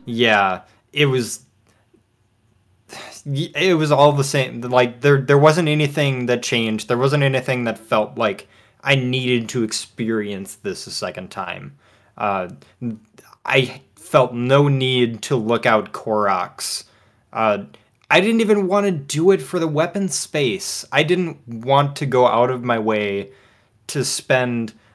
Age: 20-39